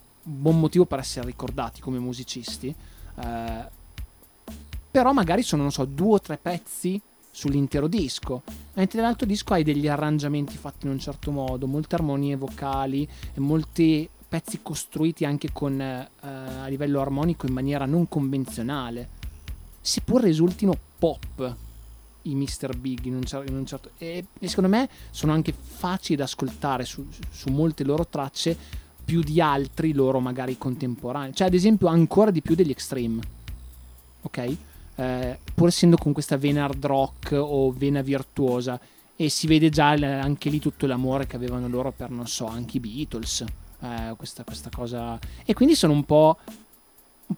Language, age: Italian, 30-49